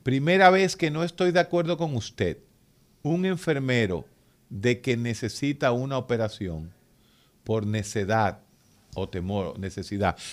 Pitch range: 100-135 Hz